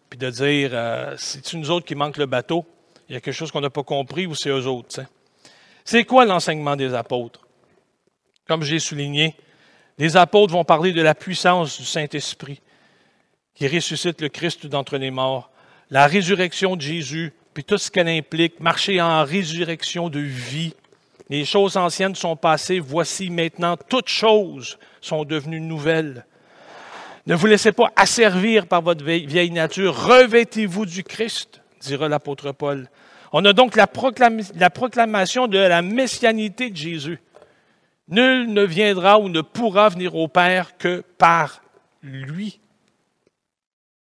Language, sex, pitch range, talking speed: French, male, 150-195 Hz, 155 wpm